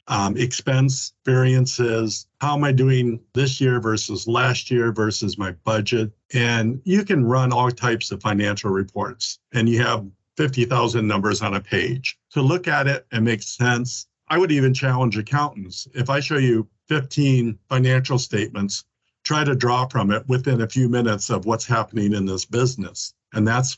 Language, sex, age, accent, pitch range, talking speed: English, male, 50-69, American, 110-130 Hz, 170 wpm